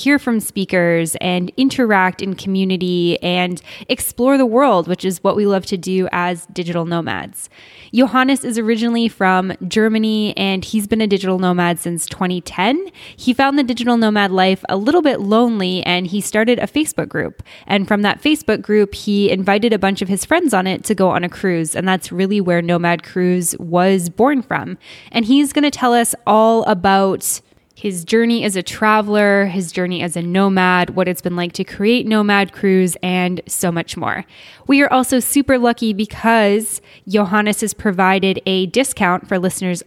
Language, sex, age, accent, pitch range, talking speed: English, female, 10-29, American, 180-230 Hz, 180 wpm